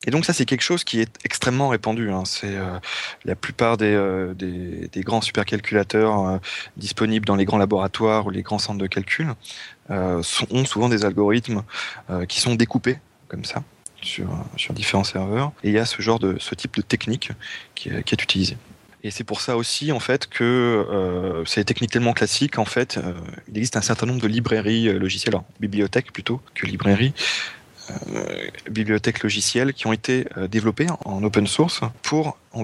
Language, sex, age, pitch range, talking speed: French, male, 20-39, 100-120 Hz, 195 wpm